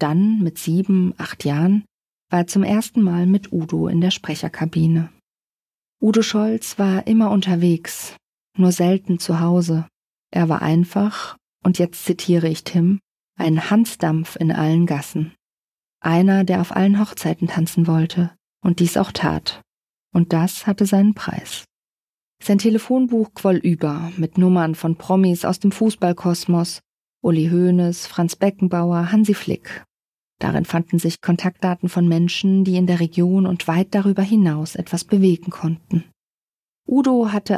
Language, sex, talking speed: German, female, 140 wpm